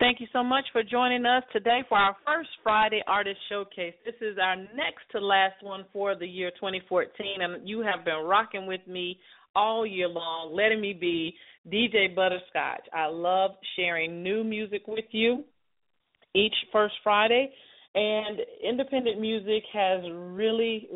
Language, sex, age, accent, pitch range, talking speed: English, female, 40-59, American, 170-220 Hz, 155 wpm